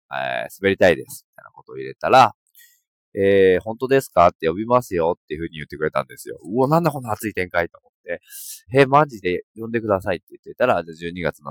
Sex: male